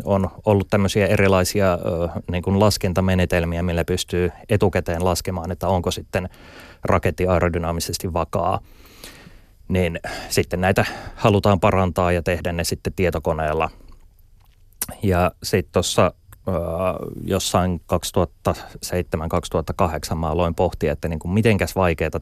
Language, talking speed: Finnish, 105 wpm